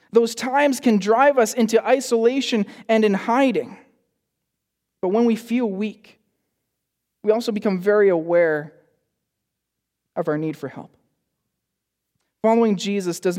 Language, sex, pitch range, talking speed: English, male, 170-225 Hz, 125 wpm